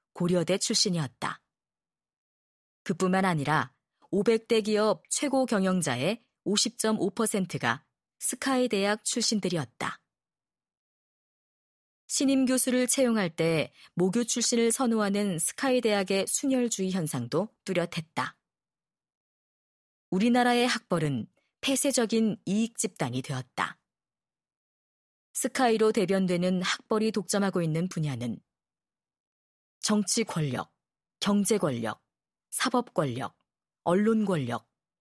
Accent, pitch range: native, 165-235 Hz